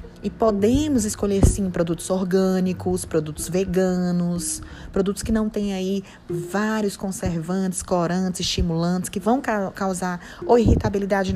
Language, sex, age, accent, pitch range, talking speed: Portuguese, female, 20-39, Brazilian, 185-225 Hz, 115 wpm